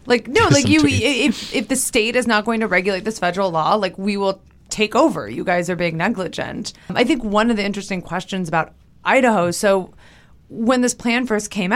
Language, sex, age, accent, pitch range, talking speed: English, female, 30-49, American, 175-230 Hz, 210 wpm